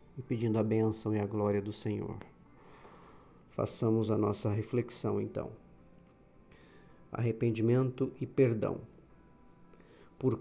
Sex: male